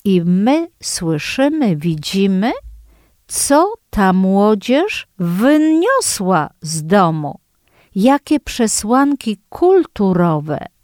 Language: Polish